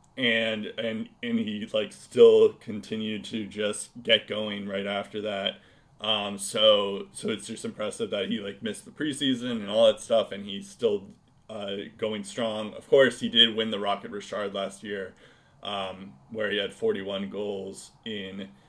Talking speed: 175 wpm